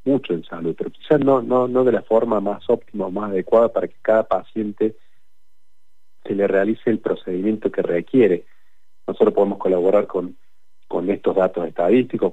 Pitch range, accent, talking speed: 90-115 Hz, Argentinian, 170 wpm